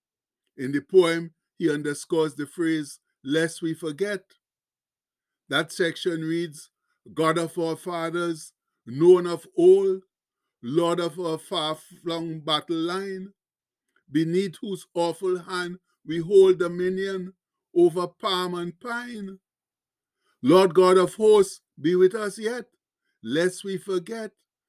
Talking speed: 115 wpm